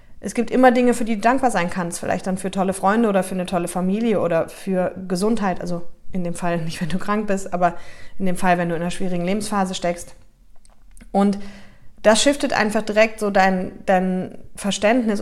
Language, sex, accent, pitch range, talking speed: German, female, German, 185-210 Hz, 205 wpm